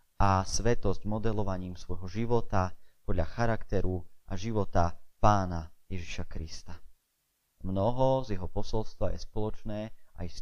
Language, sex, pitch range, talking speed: Slovak, male, 90-115 Hz, 115 wpm